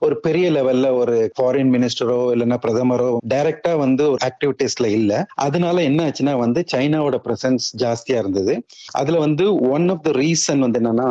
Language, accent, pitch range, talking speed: Tamil, native, 115-145 Hz, 155 wpm